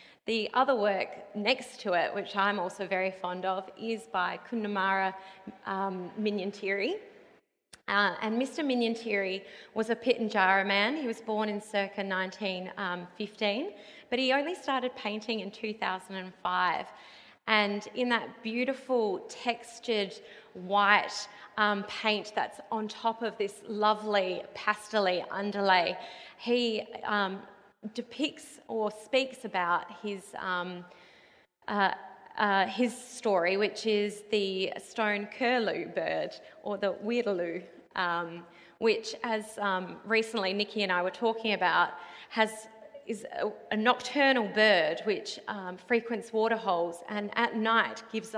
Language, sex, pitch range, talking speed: English, female, 195-230 Hz, 125 wpm